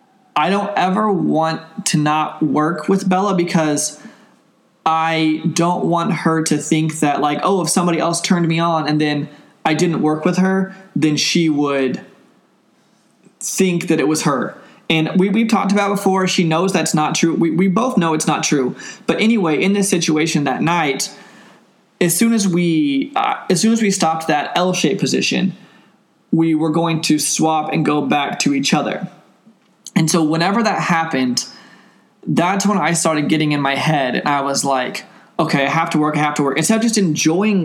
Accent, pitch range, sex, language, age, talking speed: American, 155-190 Hz, male, English, 20-39, 195 wpm